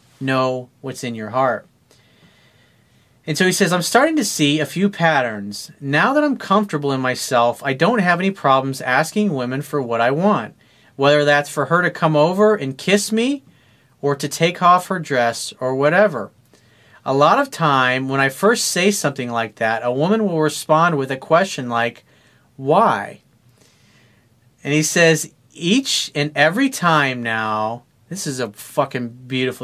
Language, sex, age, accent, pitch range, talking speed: English, male, 40-59, American, 120-165 Hz, 170 wpm